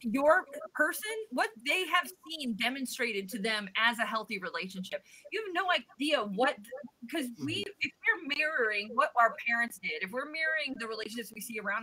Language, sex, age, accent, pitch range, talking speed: English, female, 30-49, American, 225-315 Hz, 180 wpm